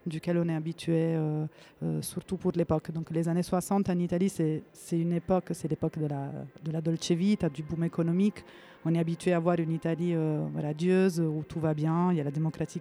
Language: French